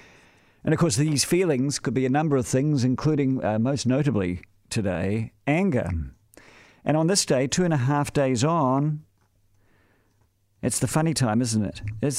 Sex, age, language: male, 50-69, English